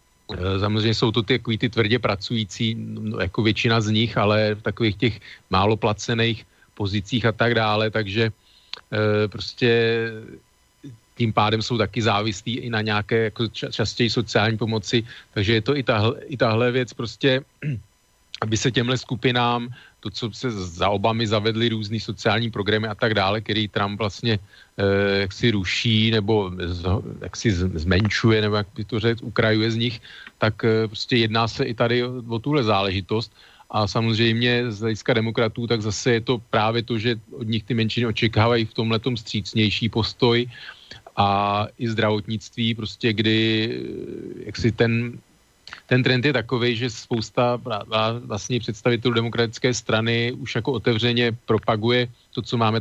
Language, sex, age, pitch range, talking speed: Slovak, male, 40-59, 105-120 Hz, 155 wpm